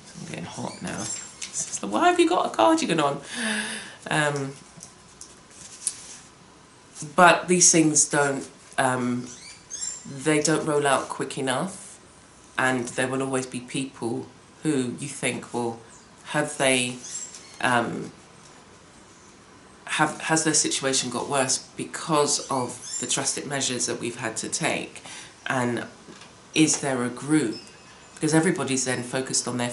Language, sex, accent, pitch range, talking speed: English, female, British, 120-155 Hz, 130 wpm